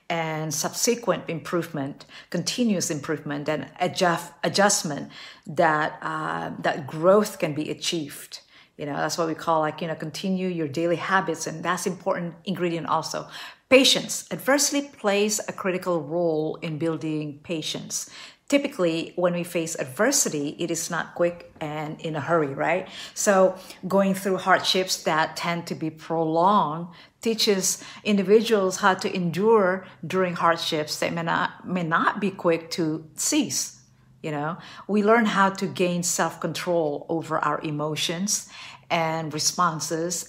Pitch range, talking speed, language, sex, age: 160-190 Hz, 140 wpm, English, female, 50-69